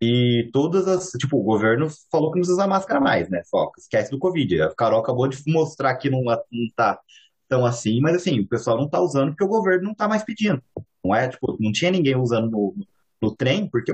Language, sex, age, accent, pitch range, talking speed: Portuguese, male, 20-39, Brazilian, 120-180 Hz, 235 wpm